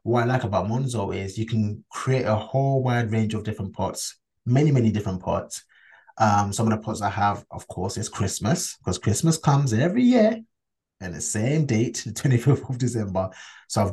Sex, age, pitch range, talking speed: male, 20-39, 100-130 Hz, 200 wpm